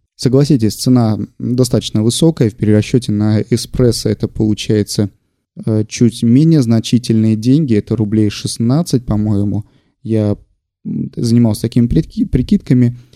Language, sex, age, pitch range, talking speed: Russian, male, 20-39, 105-125 Hz, 100 wpm